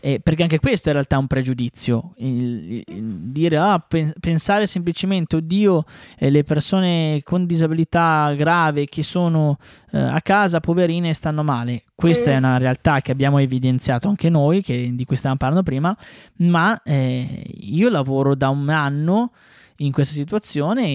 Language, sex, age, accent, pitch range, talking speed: Italian, male, 20-39, native, 130-165 Hz, 160 wpm